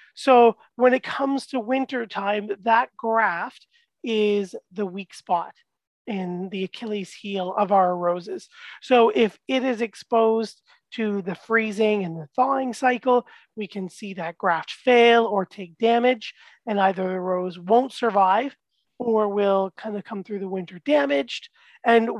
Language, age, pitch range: English, 30-49, 195-240 Hz